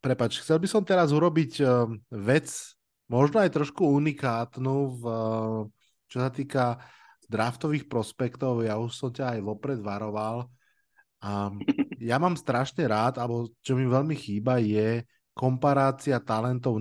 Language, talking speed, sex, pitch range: Slovak, 130 wpm, male, 115-135 Hz